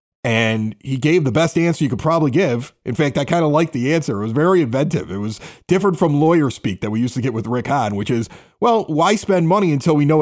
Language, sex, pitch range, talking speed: English, male, 140-205 Hz, 265 wpm